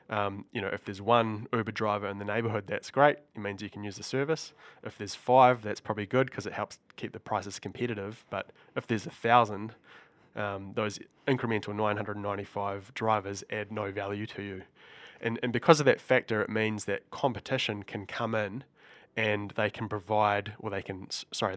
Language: English